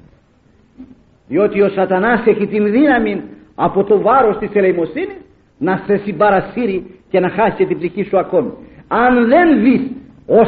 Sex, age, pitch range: male, 50-69, 205-250 Hz